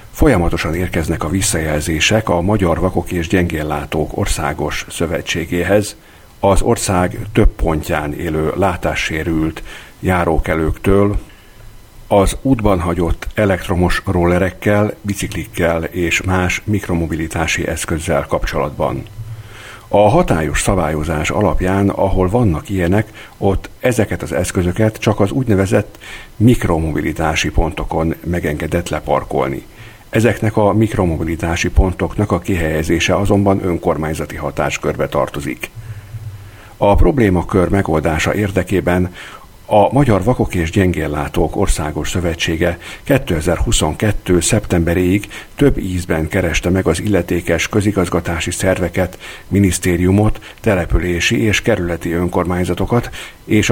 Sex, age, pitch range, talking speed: male, 50-69, 85-105 Hz, 95 wpm